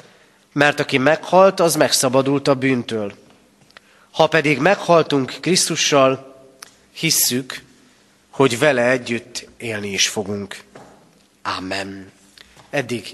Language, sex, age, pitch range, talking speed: Hungarian, male, 30-49, 125-150 Hz, 90 wpm